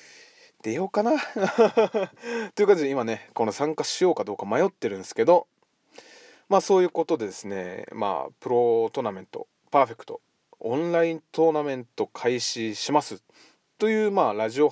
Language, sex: Japanese, male